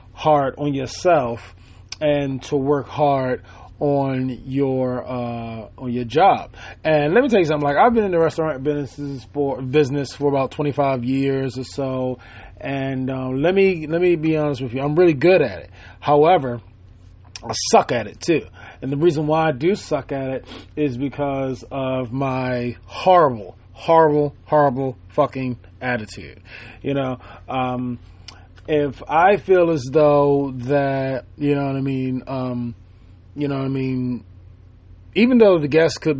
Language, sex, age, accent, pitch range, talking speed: English, male, 20-39, American, 120-150 Hz, 160 wpm